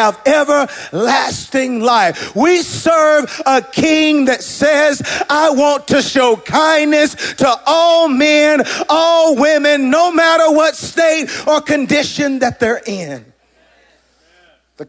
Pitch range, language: 205-275 Hz, English